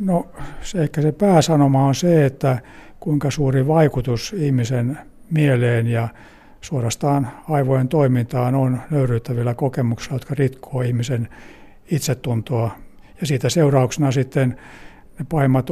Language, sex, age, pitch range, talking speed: Finnish, male, 60-79, 125-145 Hz, 115 wpm